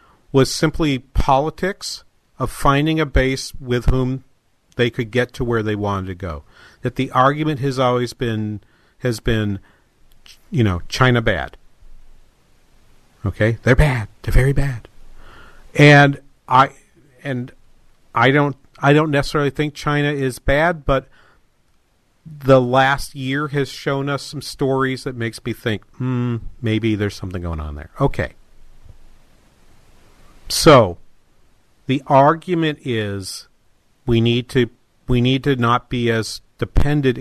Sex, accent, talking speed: male, American, 135 wpm